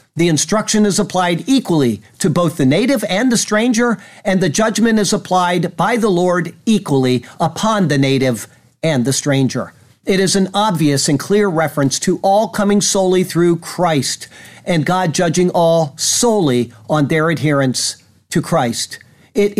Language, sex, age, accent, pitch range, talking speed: English, male, 50-69, American, 150-210 Hz, 155 wpm